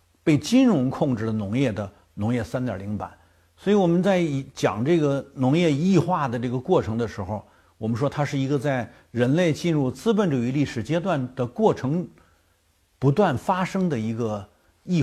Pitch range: 100-140 Hz